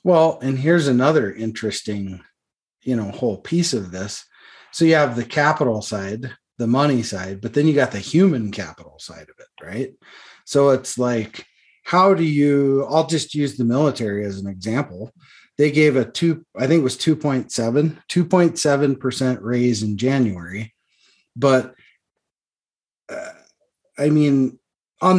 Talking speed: 155 wpm